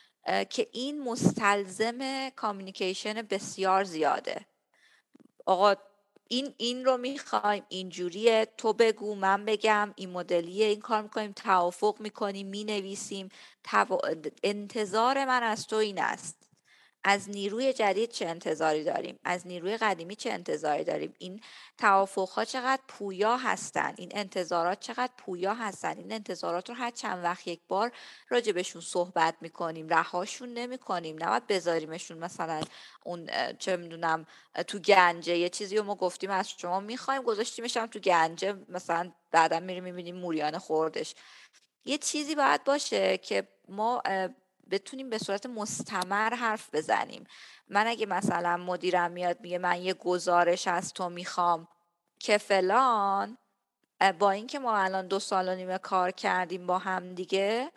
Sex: female